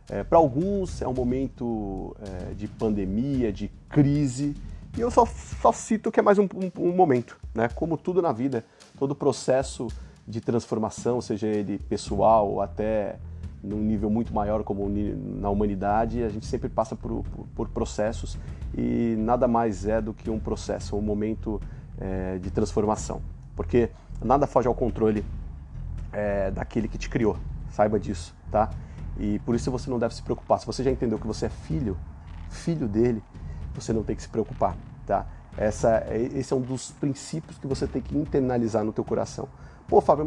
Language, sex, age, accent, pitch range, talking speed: Portuguese, male, 30-49, Brazilian, 100-135 Hz, 175 wpm